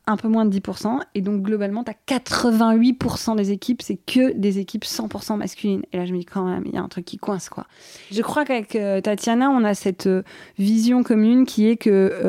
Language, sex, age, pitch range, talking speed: French, female, 20-39, 195-235 Hz, 235 wpm